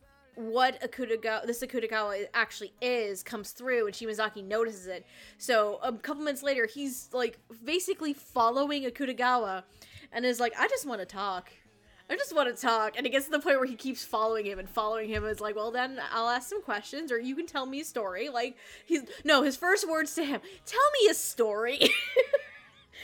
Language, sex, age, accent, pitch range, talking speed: English, female, 10-29, American, 225-300 Hz, 200 wpm